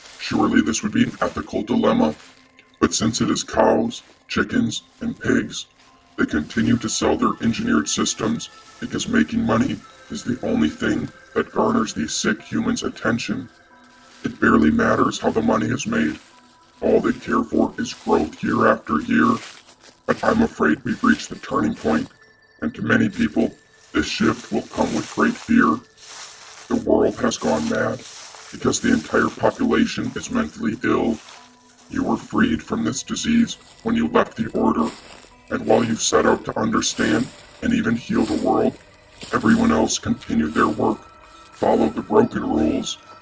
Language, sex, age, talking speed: English, female, 50-69, 160 wpm